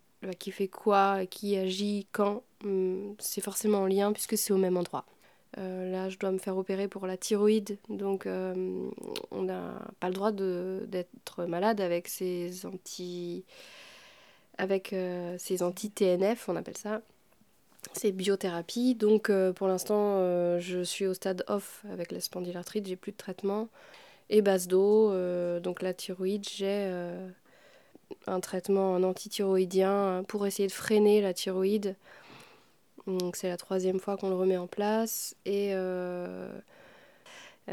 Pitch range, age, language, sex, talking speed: 180-200 Hz, 20-39, French, female, 150 wpm